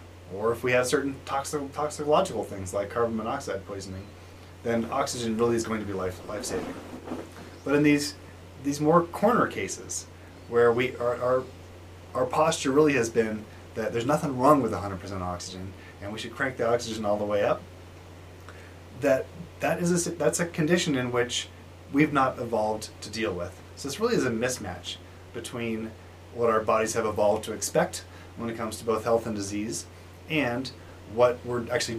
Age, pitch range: 30-49, 90-120 Hz